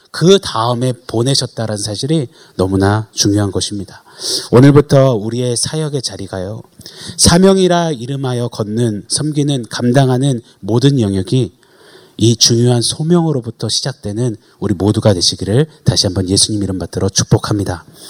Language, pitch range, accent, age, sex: Korean, 115-160 Hz, native, 30-49, male